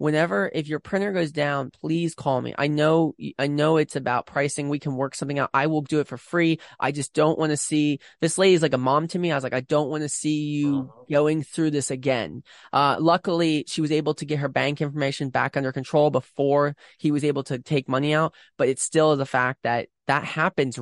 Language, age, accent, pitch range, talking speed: English, 20-39, American, 130-150 Hz, 240 wpm